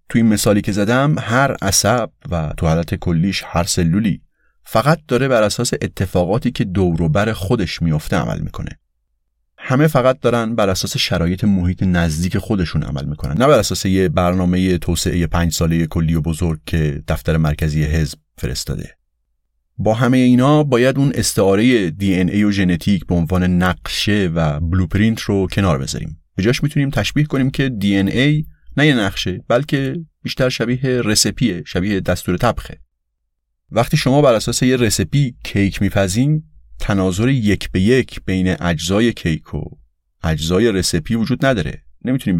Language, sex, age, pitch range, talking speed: Persian, male, 30-49, 80-120 Hz, 150 wpm